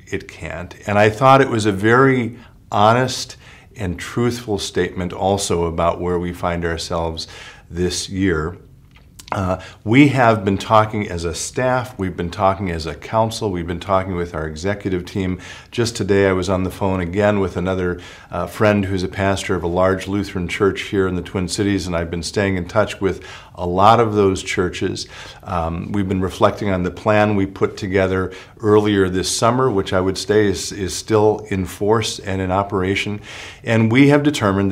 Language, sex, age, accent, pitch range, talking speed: English, male, 50-69, American, 90-115 Hz, 185 wpm